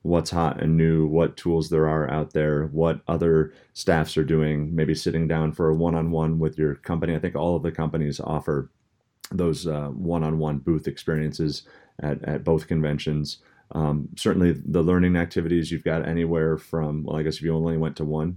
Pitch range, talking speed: 75-85 Hz, 190 wpm